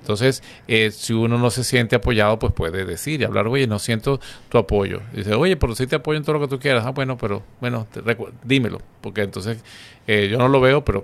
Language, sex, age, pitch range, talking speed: Spanish, male, 40-59, 110-130 Hz, 255 wpm